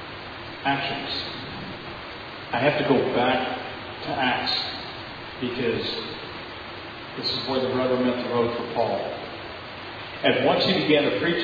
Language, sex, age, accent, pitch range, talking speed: English, male, 40-59, American, 140-165 Hz, 130 wpm